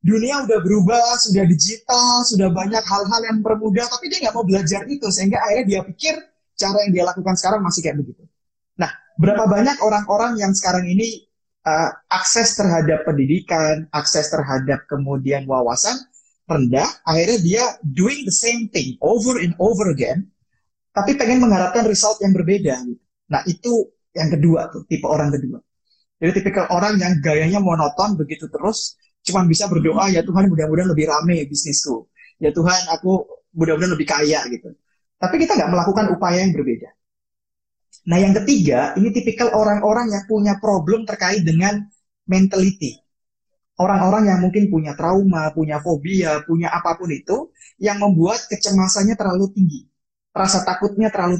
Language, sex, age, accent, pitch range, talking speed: Indonesian, male, 30-49, native, 160-210 Hz, 150 wpm